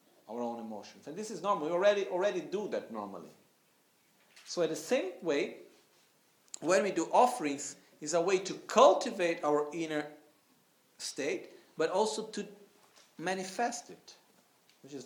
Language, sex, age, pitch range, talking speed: Italian, male, 50-69, 145-200 Hz, 150 wpm